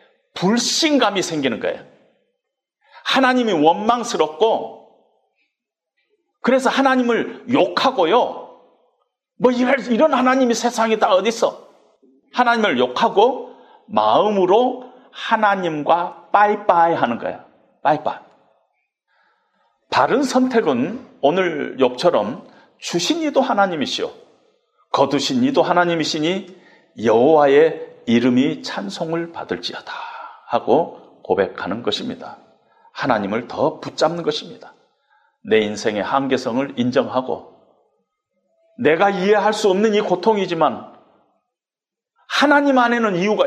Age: 40-59